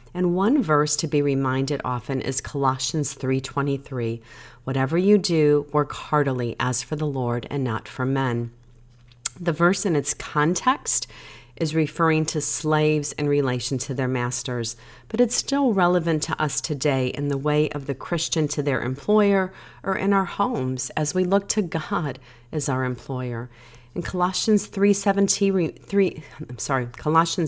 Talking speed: 145 wpm